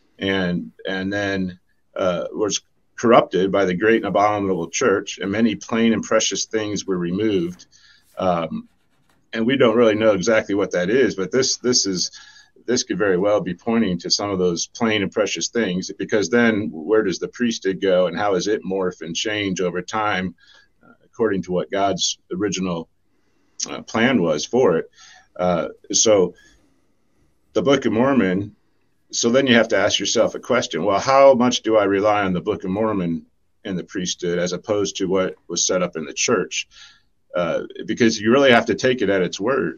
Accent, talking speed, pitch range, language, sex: American, 190 wpm, 90-110 Hz, English, male